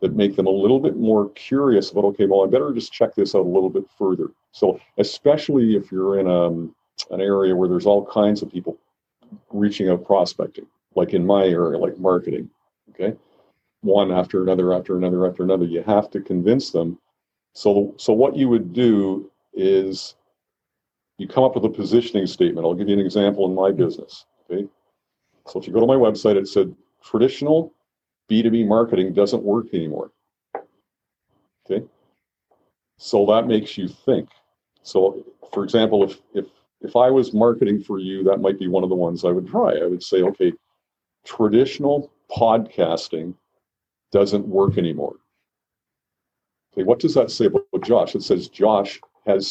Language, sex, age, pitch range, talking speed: English, male, 50-69, 95-125 Hz, 170 wpm